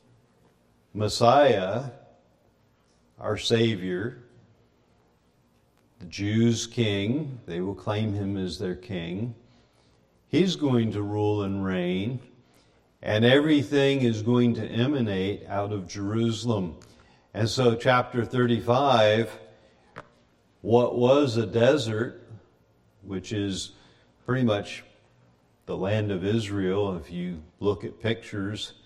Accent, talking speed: American, 100 wpm